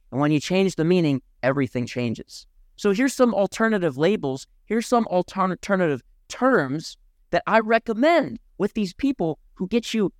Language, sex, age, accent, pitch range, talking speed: English, male, 40-59, American, 155-245 Hz, 155 wpm